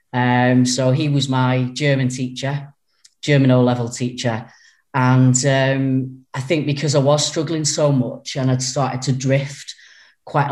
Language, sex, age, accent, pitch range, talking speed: English, female, 30-49, British, 125-145 Hz, 150 wpm